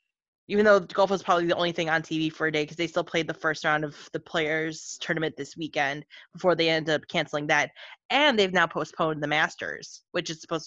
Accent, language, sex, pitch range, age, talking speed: American, English, female, 150-195 Hz, 20-39, 235 wpm